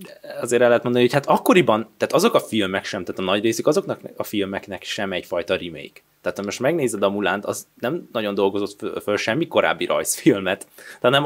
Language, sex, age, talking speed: Hungarian, male, 20-39, 210 wpm